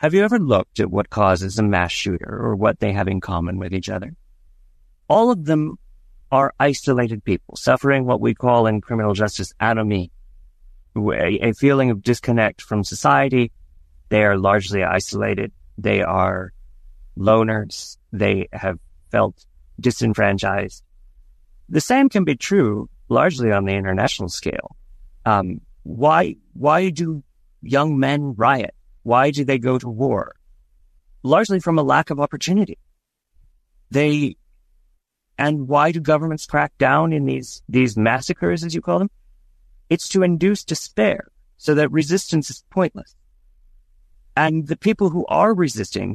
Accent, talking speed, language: American, 140 wpm, English